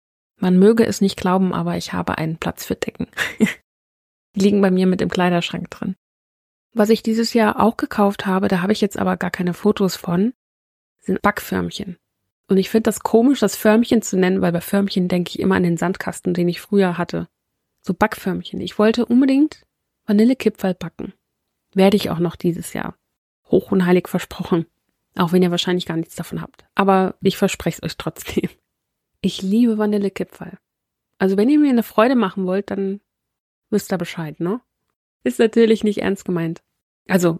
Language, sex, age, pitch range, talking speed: German, female, 30-49, 180-215 Hz, 180 wpm